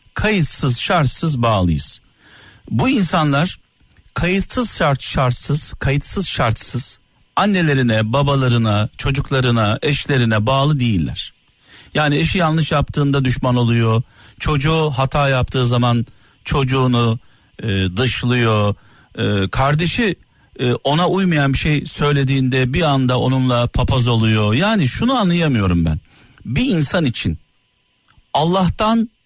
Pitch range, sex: 115-155 Hz, male